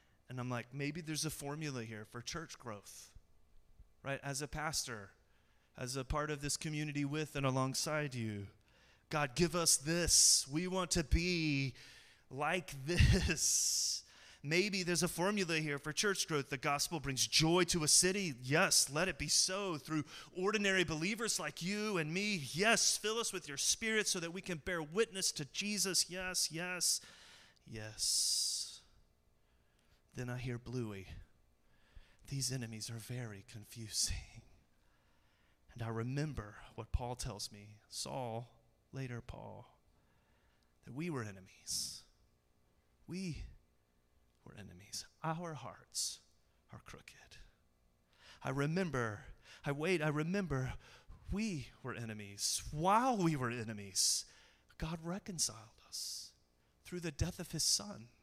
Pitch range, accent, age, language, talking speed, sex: 110-170 Hz, American, 30-49, English, 135 wpm, male